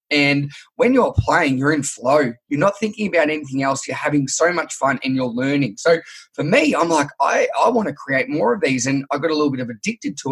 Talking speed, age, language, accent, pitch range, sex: 250 wpm, 20-39, English, Australian, 135-170 Hz, male